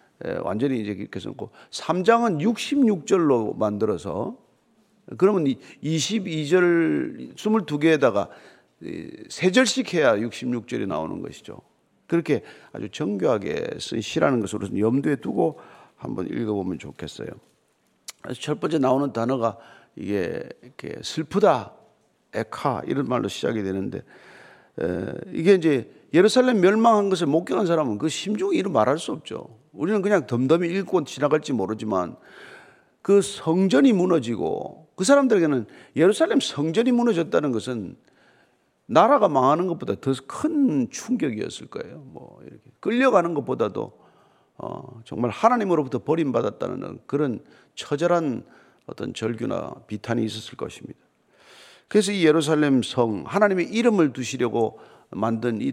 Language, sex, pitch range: Korean, male, 130-210 Hz